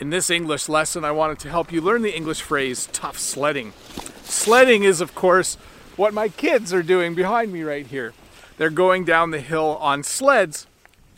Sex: male